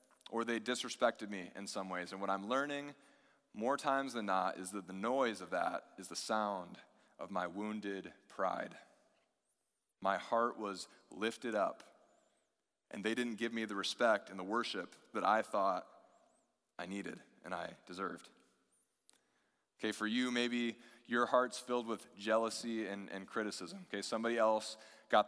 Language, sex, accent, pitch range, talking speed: English, male, American, 105-125 Hz, 160 wpm